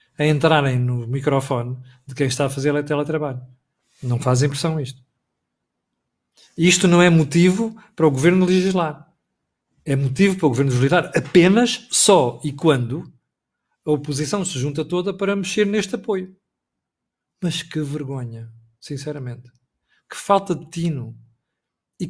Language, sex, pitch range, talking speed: Portuguese, male, 140-200 Hz, 135 wpm